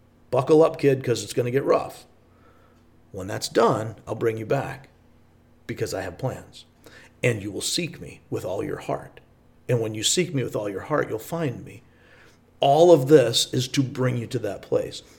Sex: male